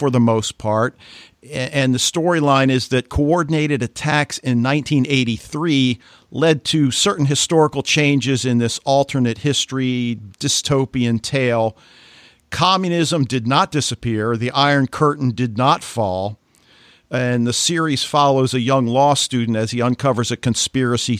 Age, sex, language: 50-69, male, English